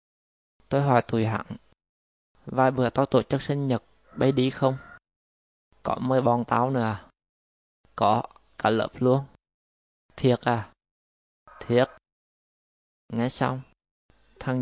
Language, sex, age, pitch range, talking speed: Vietnamese, male, 20-39, 105-130 Hz, 125 wpm